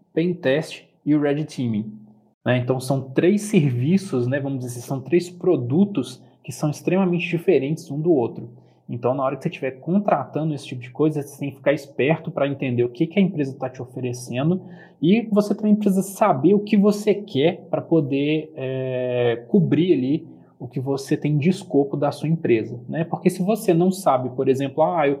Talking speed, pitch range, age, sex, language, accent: 200 wpm, 125-165 Hz, 20-39, male, Portuguese, Brazilian